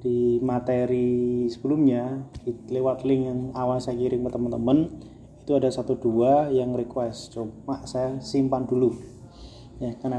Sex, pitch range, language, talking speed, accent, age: male, 120-140 Hz, Indonesian, 140 wpm, native, 20-39